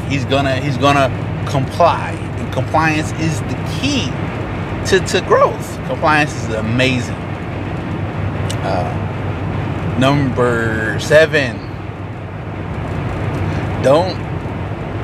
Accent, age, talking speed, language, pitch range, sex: American, 20-39, 80 wpm, English, 110-140 Hz, male